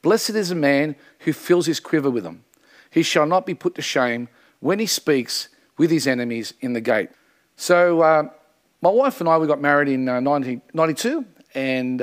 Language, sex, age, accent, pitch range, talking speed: English, male, 40-59, Australian, 135-180 Hz, 195 wpm